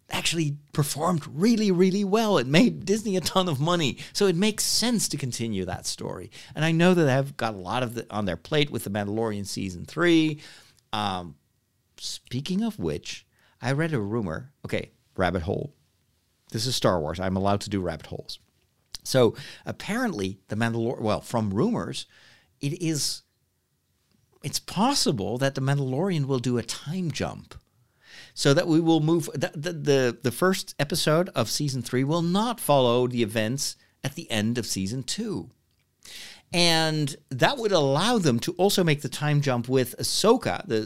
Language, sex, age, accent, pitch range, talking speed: English, male, 50-69, American, 120-175 Hz, 170 wpm